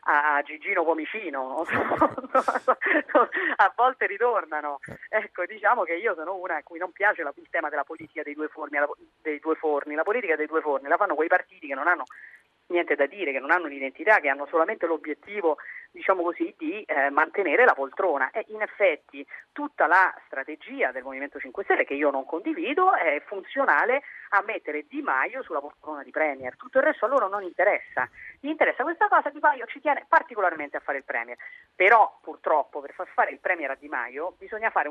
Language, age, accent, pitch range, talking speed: Italian, 30-49, native, 145-215 Hz, 205 wpm